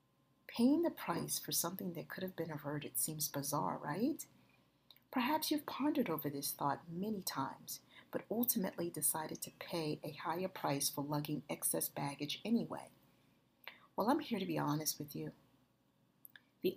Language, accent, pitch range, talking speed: English, American, 145-195 Hz, 155 wpm